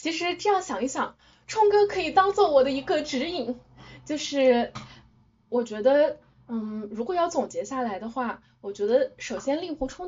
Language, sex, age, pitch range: Chinese, female, 10-29, 240-305 Hz